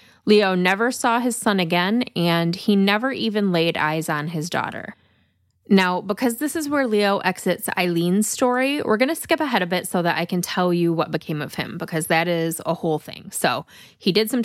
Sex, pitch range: female, 165-210 Hz